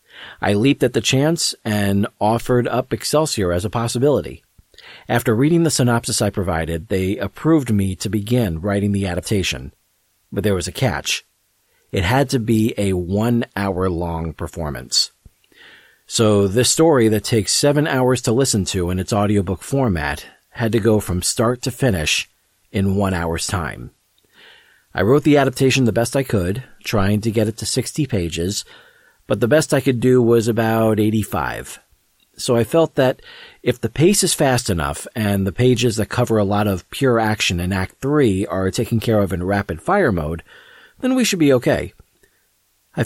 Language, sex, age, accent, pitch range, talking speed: English, male, 40-59, American, 100-125 Hz, 170 wpm